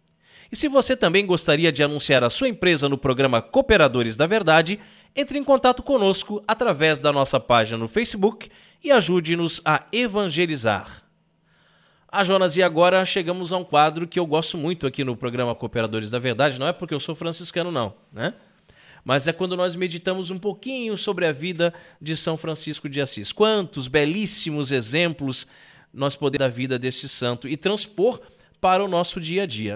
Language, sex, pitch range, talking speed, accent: Portuguese, male, 140-190 Hz, 175 wpm, Brazilian